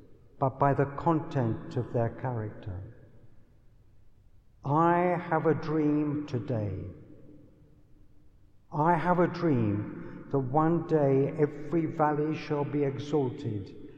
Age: 60-79